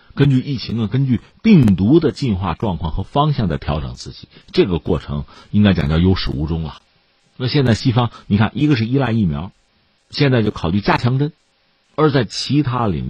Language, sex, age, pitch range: Chinese, male, 50-69, 90-135 Hz